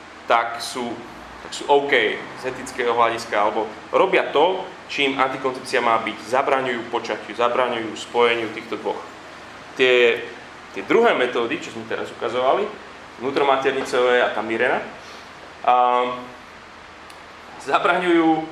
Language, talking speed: Slovak, 115 wpm